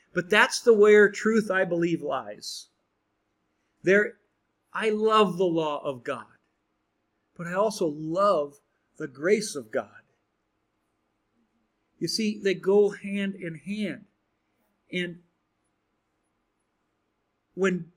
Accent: American